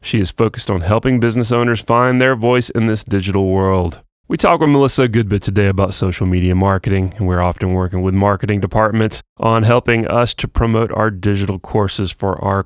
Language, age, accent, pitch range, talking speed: English, 30-49, American, 95-115 Hz, 205 wpm